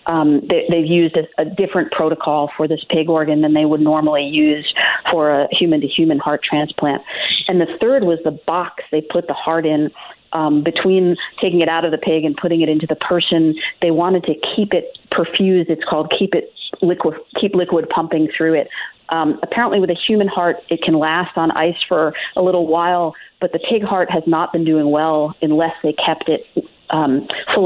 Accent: American